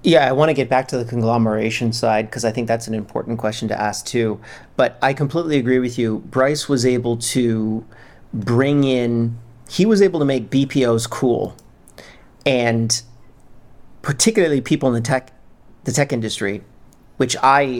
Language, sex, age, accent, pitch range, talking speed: English, male, 40-59, American, 115-135 Hz, 170 wpm